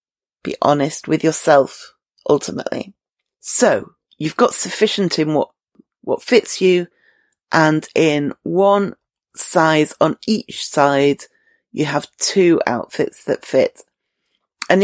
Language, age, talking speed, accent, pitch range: English, 40-59, 115 wpm, British, 145-185 Hz